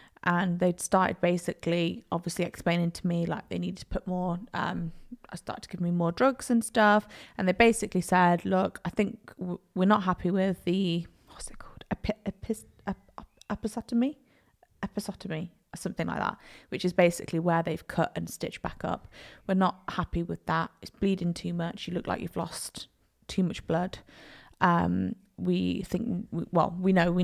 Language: Chinese